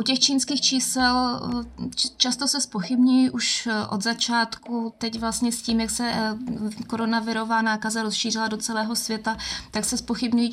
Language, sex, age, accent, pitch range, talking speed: Czech, female, 20-39, native, 215-235 Hz, 145 wpm